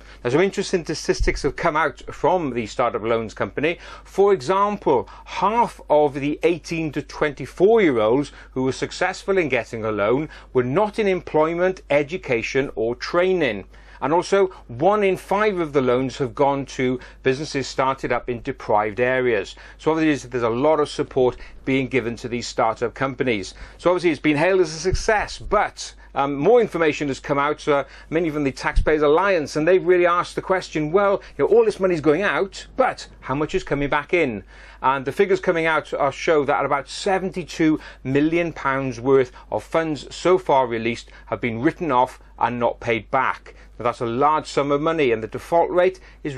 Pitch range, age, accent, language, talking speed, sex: 130-170 Hz, 40-59, British, English, 190 wpm, male